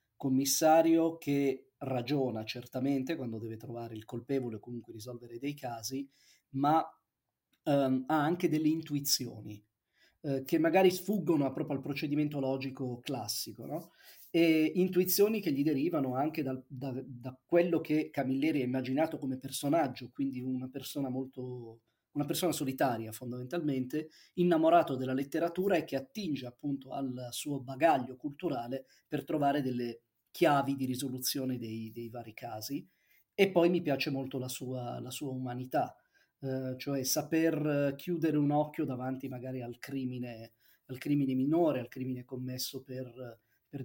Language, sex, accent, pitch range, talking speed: Italian, male, native, 130-155 Hz, 135 wpm